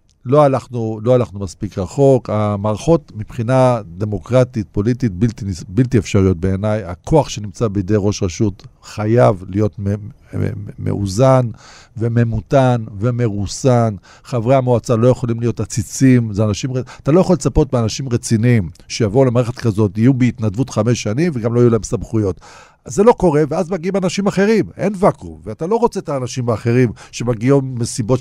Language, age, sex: Hebrew, 50-69, male